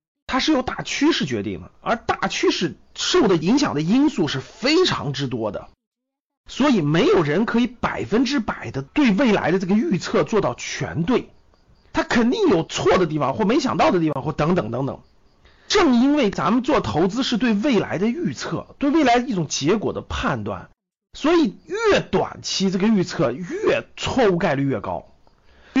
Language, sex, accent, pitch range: Chinese, male, native, 180-285 Hz